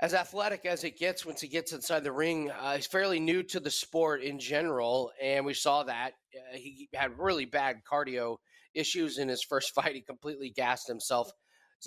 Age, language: 30-49, English